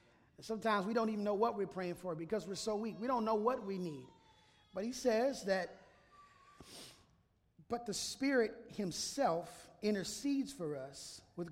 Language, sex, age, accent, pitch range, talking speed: English, male, 30-49, American, 175-225 Hz, 160 wpm